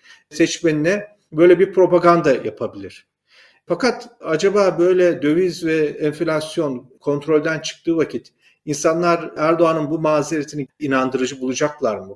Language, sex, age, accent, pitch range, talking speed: Turkish, male, 40-59, native, 130-185 Hz, 105 wpm